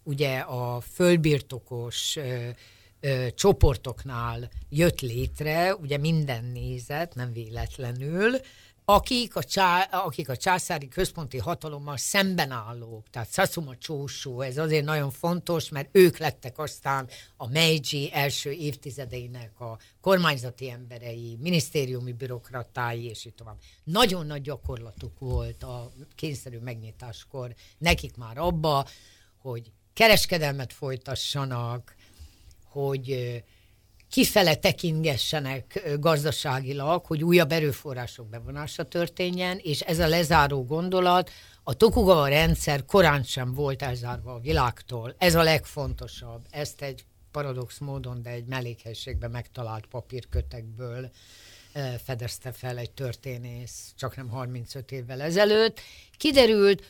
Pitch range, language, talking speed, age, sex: 120-160 Hz, Hungarian, 105 wpm, 60-79, female